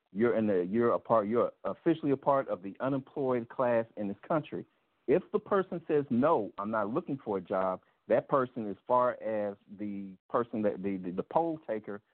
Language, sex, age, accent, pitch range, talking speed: English, male, 50-69, American, 105-130 Hz, 205 wpm